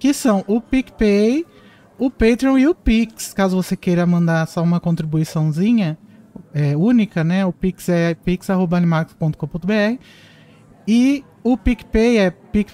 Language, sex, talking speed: Portuguese, male, 125 wpm